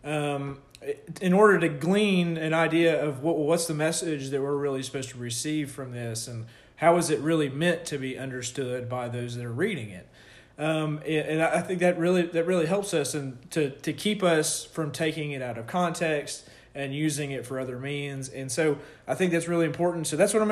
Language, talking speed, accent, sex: English, 215 wpm, American, male